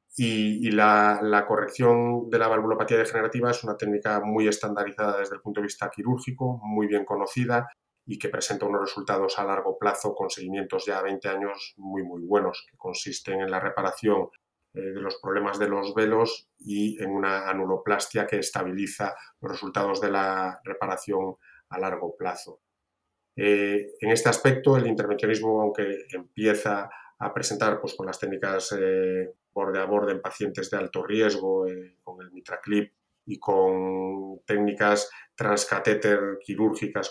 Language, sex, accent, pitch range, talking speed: Spanish, male, Spanish, 95-105 Hz, 150 wpm